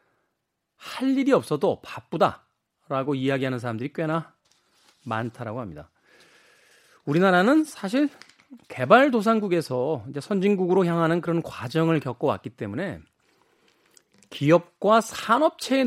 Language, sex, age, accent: Korean, male, 40-59, native